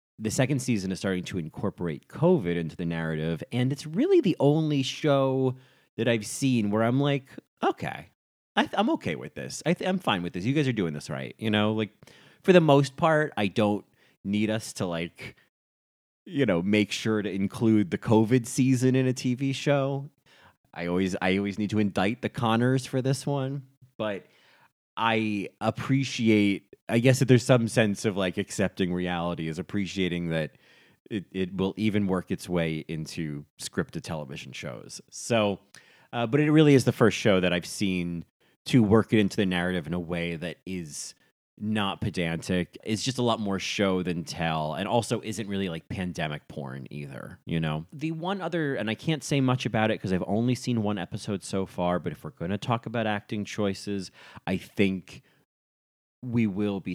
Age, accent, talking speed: 30-49, American, 190 wpm